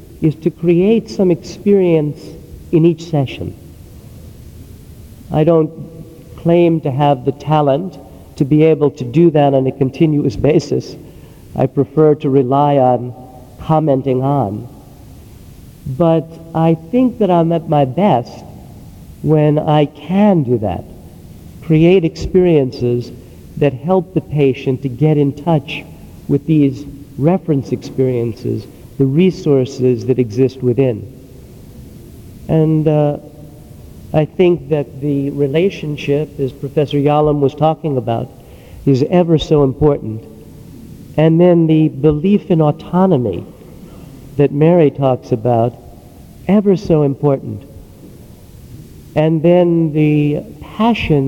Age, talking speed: 50-69, 115 wpm